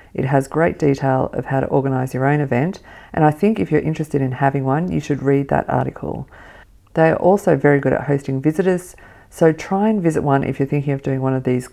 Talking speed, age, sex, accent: 235 wpm, 40-59, female, Australian